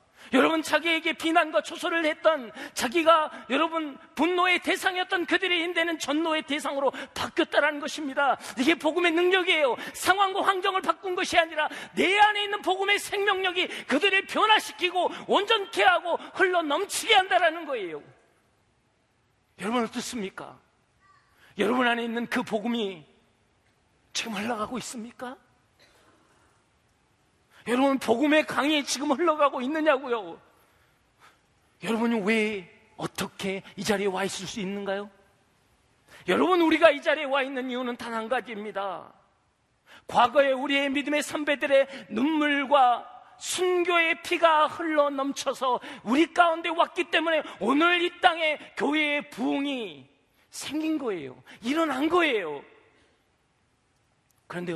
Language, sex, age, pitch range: Korean, male, 40-59, 240-335 Hz